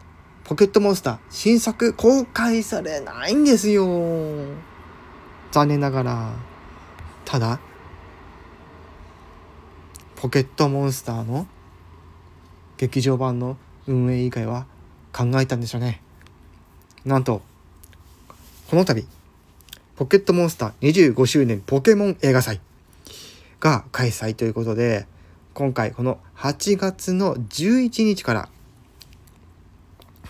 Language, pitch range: Japanese, 85-145 Hz